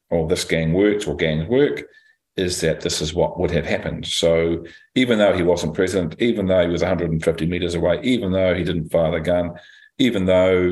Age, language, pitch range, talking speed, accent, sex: 40-59, English, 80-95 Hz, 205 wpm, Australian, male